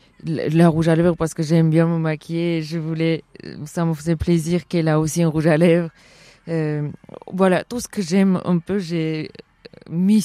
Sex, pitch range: female, 165-185 Hz